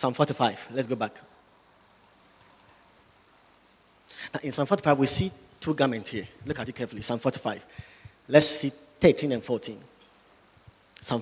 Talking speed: 140 wpm